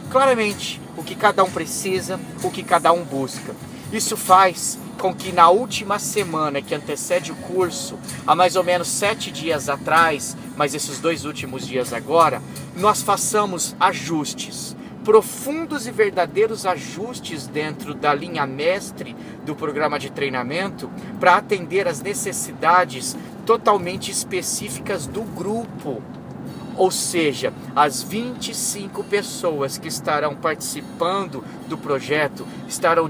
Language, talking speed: Portuguese, 125 wpm